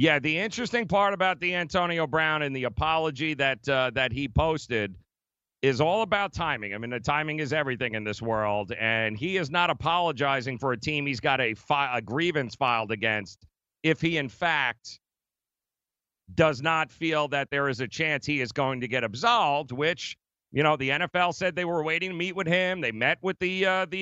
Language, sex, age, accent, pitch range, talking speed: English, male, 40-59, American, 140-180 Hz, 205 wpm